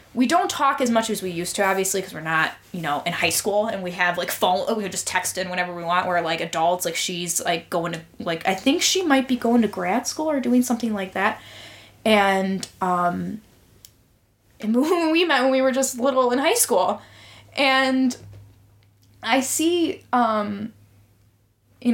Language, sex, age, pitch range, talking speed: English, female, 10-29, 180-240 Hz, 195 wpm